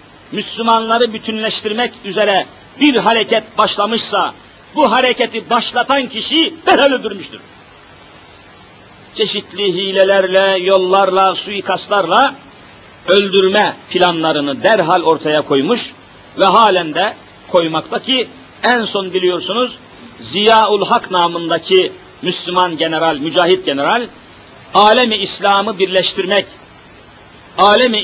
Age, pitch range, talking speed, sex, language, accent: 50-69, 190-240 Hz, 85 wpm, male, Turkish, native